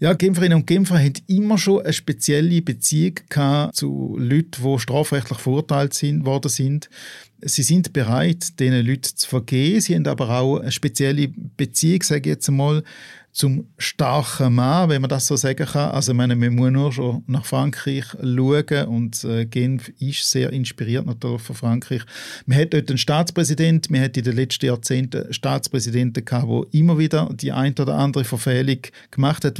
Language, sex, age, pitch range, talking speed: German, male, 50-69, 130-155 Hz, 170 wpm